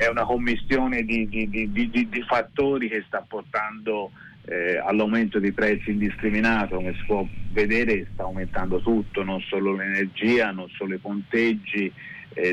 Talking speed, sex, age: 155 wpm, male, 30-49